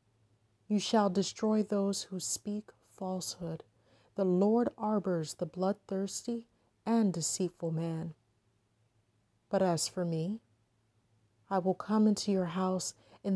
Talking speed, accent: 115 wpm, American